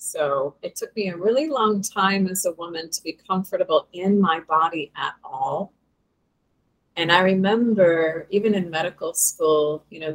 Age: 30-49